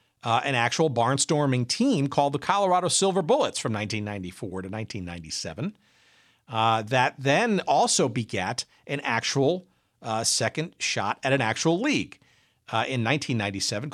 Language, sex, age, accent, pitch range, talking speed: English, male, 50-69, American, 110-145 Hz, 135 wpm